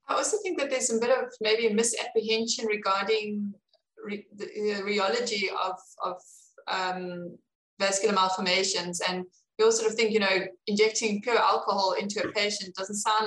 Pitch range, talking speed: 185-225 Hz, 170 wpm